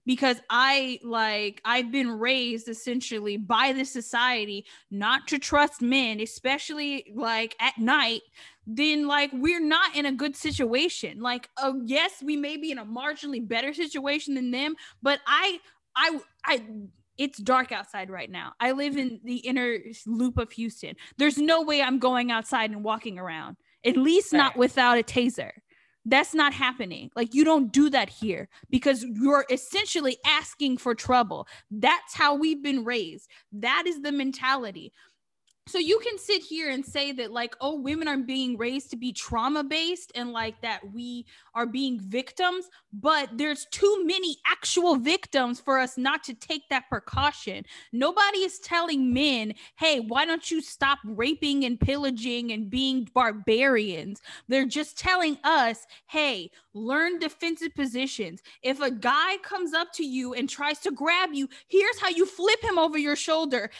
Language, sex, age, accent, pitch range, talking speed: English, female, 10-29, American, 245-305 Hz, 165 wpm